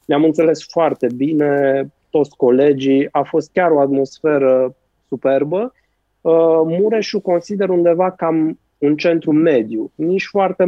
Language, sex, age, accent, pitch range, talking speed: Romanian, male, 20-39, native, 150-200 Hz, 120 wpm